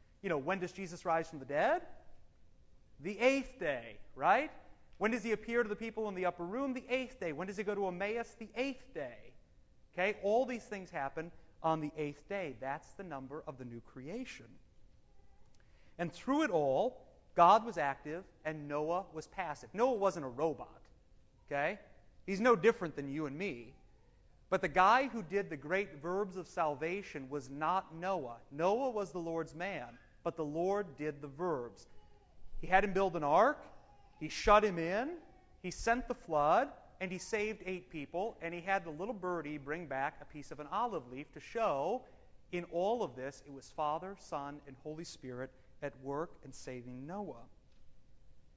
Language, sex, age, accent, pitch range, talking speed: English, male, 30-49, American, 135-195 Hz, 185 wpm